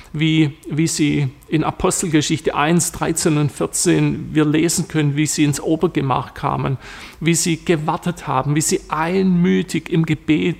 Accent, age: German, 40-59